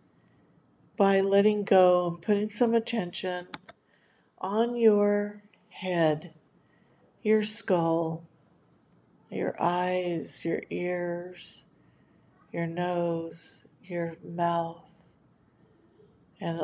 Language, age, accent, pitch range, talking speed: English, 50-69, American, 165-190 Hz, 75 wpm